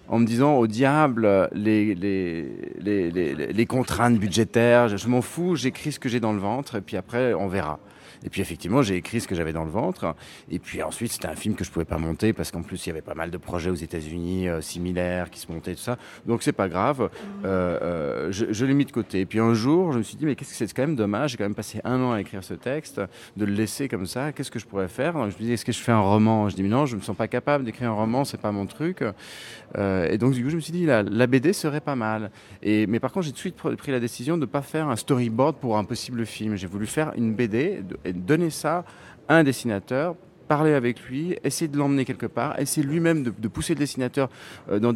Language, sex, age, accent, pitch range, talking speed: French, male, 40-59, French, 100-135 Hz, 270 wpm